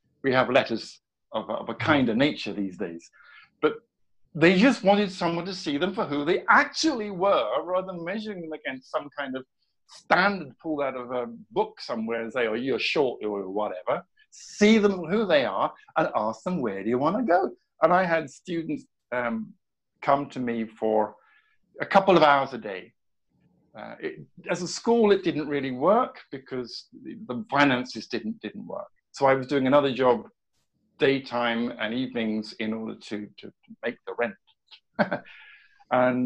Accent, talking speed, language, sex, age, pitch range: British, 180 wpm, English, male, 50-69, 125-205 Hz